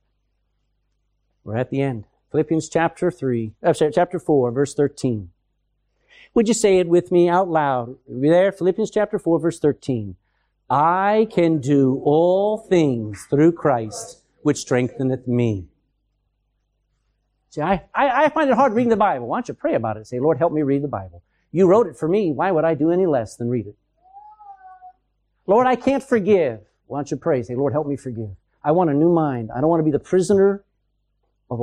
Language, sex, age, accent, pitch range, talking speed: English, male, 50-69, American, 125-175 Hz, 190 wpm